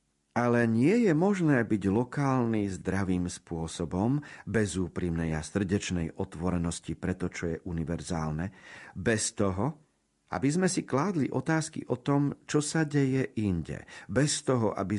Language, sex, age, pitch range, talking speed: Slovak, male, 50-69, 90-130 Hz, 135 wpm